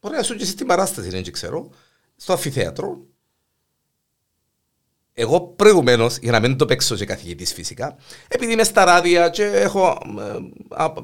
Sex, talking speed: male, 160 wpm